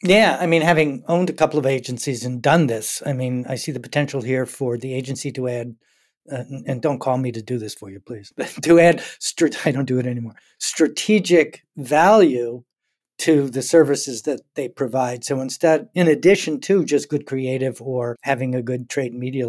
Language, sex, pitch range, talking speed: English, male, 125-155 Hz, 195 wpm